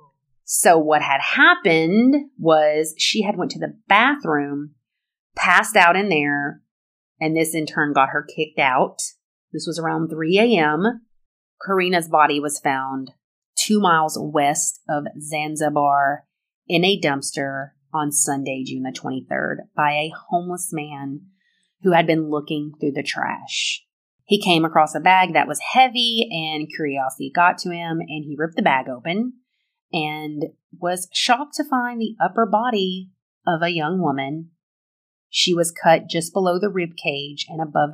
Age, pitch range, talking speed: 30-49, 145-190 Hz, 155 wpm